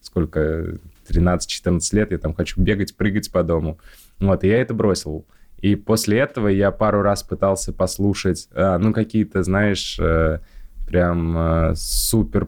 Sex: male